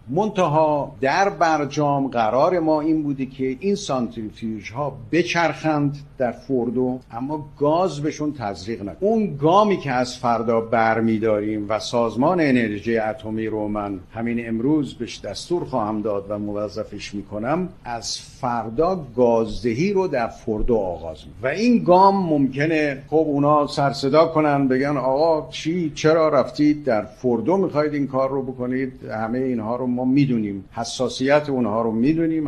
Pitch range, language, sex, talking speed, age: 110-150 Hz, Persian, male, 145 wpm, 50-69